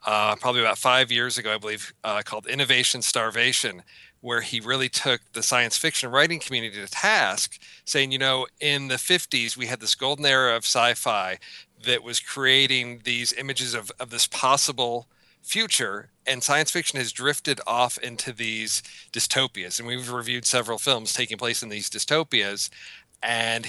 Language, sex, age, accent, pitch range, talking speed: English, male, 40-59, American, 115-135 Hz, 170 wpm